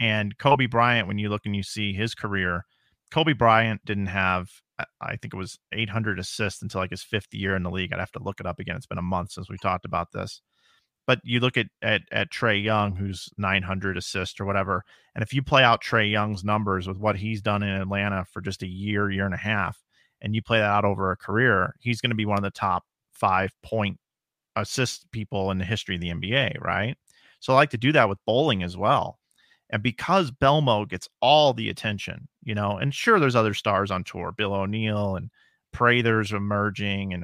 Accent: American